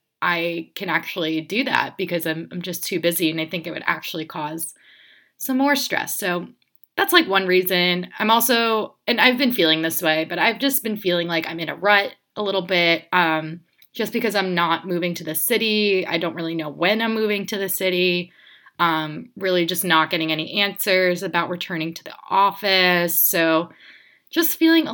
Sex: female